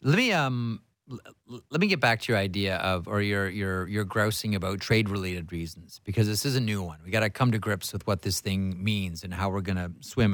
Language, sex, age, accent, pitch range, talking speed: English, male, 30-49, American, 95-120 Hz, 250 wpm